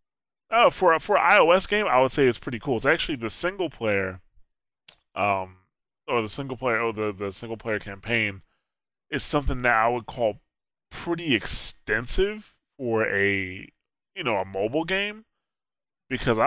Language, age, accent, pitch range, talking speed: English, 20-39, American, 100-125 Hz, 155 wpm